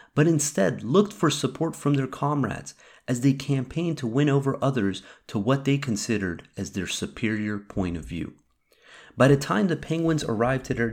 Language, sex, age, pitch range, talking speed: English, male, 30-49, 100-145 Hz, 180 wpm